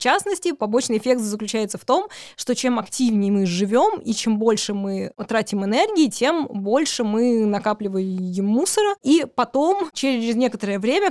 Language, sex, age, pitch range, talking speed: Russian, female, 20-39, 210-250 Hz, 150 wpm